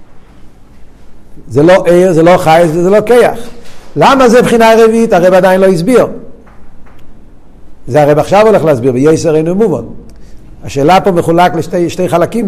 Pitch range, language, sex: 170-225 Hz, Hebrew, male